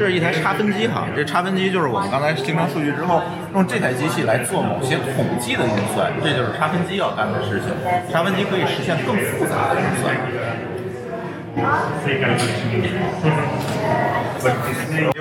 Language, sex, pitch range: Chinese, male, 120-160 Hz